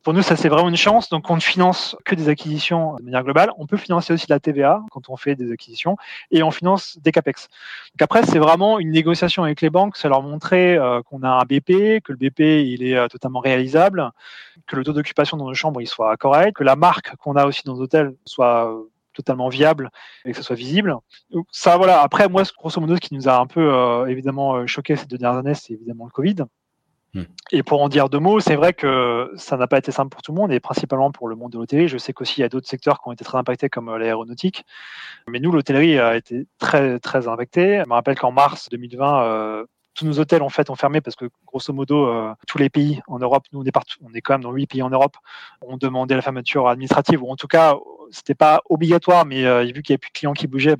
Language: French